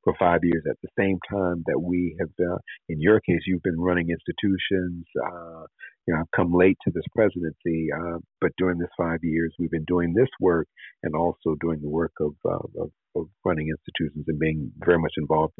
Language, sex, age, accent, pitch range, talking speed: English, male, 50-69, American, 80-90 Hz, 210 wpm